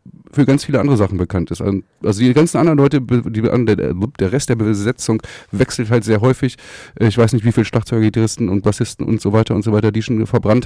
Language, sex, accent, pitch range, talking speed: German, male, German, 105-130 Hz, 220 wpm